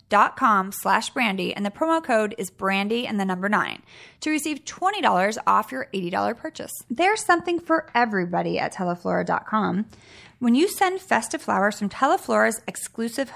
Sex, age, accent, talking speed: female, 30-49, American, 155 wpm